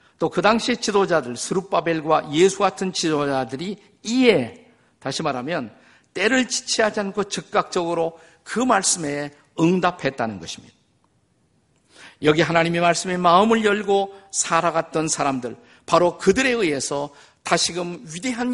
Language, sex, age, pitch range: Korean, male, 50-69, 145-195 Hz